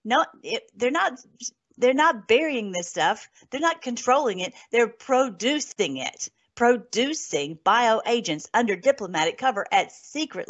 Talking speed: 135 wpm